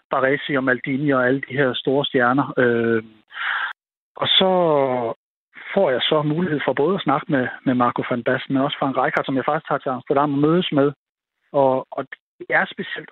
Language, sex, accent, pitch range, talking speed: Danish, male, native, 130-150 Hz, 185 wpm